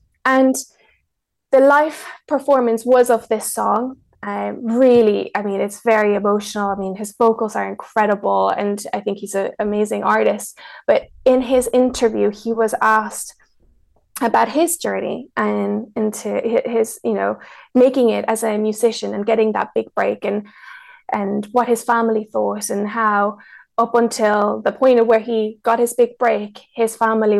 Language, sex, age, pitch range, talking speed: English, female, 20-39, 210-245 Hz, 160 wpm